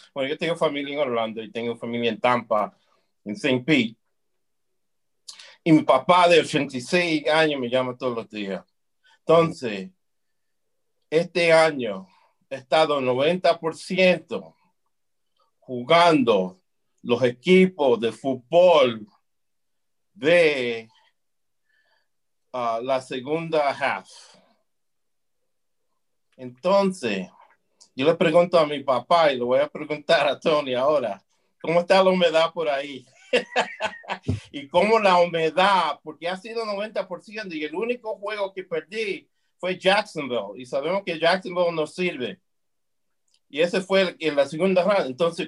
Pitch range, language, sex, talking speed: 130-180 Hz, English, male, 125 wpm